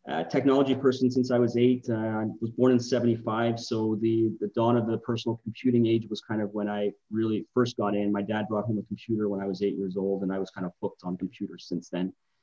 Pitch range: 100-115 Hz